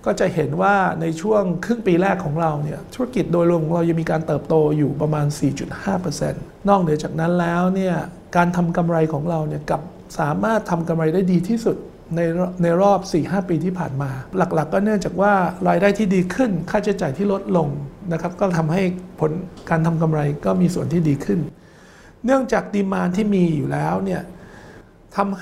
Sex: male